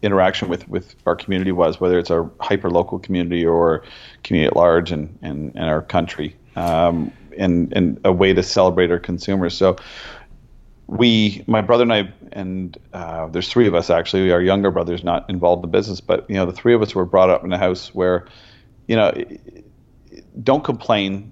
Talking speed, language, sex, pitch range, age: 195 wpm, English, male, 85-100 Hz, 40-59